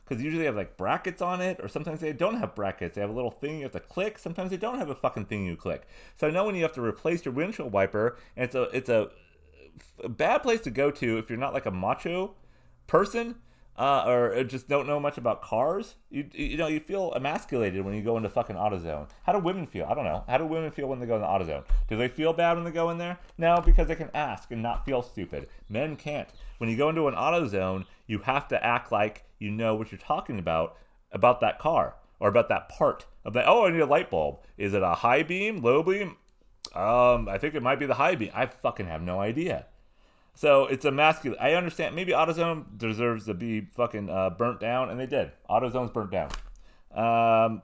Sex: male